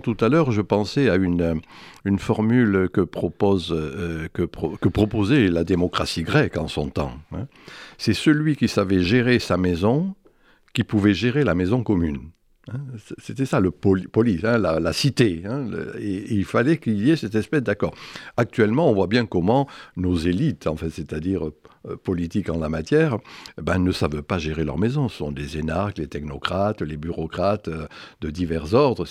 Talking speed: 185 wpm